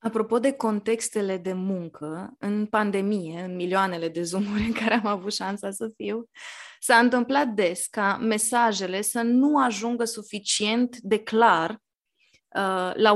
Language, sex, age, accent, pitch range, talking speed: Romanian, female, 20-39, native, 200-250 Hz, 140 wpm